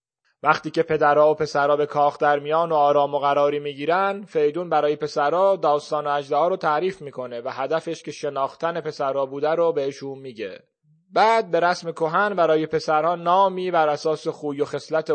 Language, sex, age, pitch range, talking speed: Persian, male, 30-49, 135-155 Hz, 165 wpm